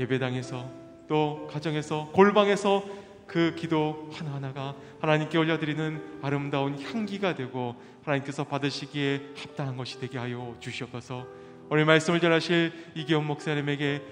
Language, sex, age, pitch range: Korean, male, 30-49, 110-150 Hz